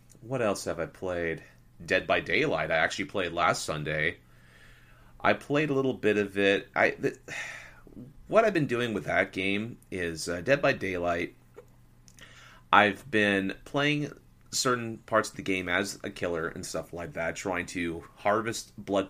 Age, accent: 30-49, American